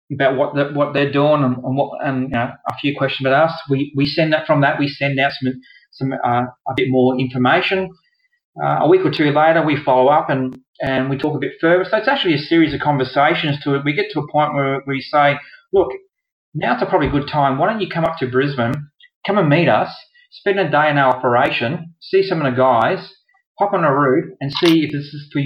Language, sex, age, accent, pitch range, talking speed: English, male, 30-49, Australian, 135-180 Hz, 245 wpm